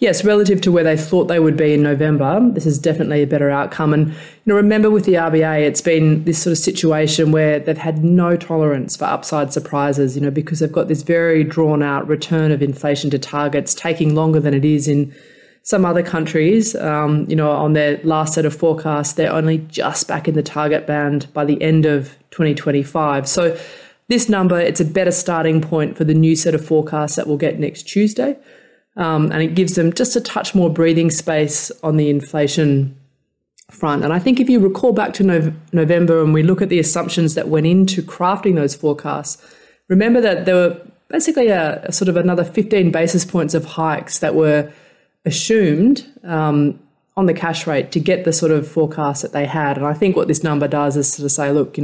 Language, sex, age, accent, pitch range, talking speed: English, female, 20-39, Australian, 150-175 Hz, 215 wpm